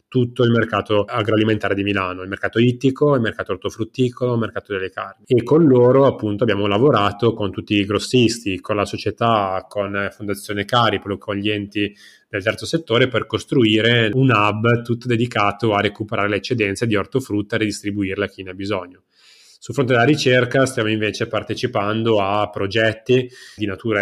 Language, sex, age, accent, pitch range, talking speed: Italian, male, 20-39, native, 100-120 Hz, 170 wpm